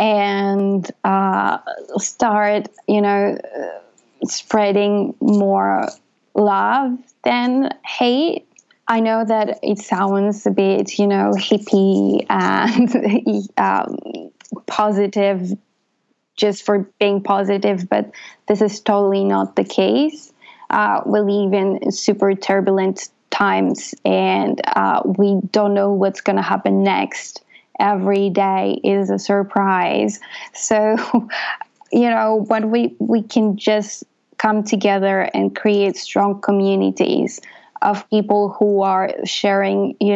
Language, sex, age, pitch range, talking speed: English, female, 20-39, 195-215 Hz, 110 wpm